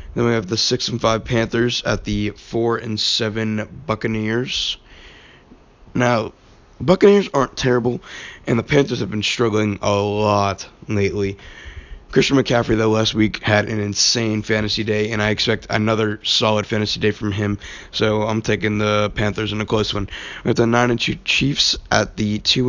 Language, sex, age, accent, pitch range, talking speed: English, male, 20-39, American, 105-120 Hz, 170 wpm